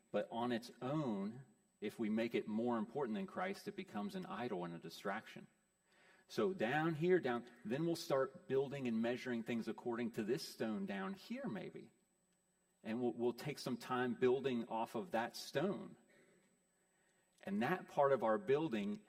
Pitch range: 120-185 Hz